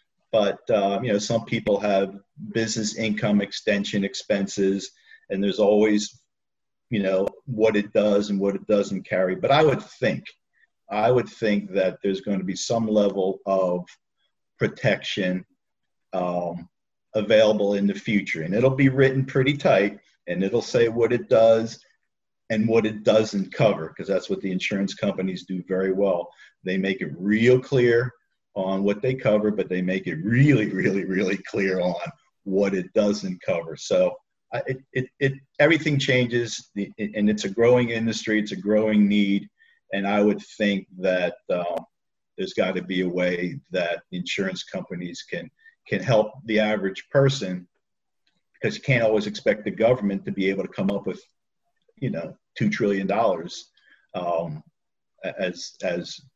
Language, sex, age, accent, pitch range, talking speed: English, male, 50-69, American, 95-120 Hz, 160 wpm